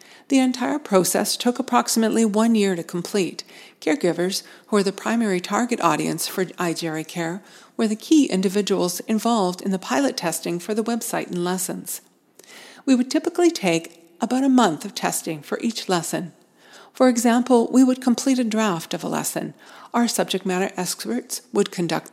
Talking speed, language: 165 wpm, English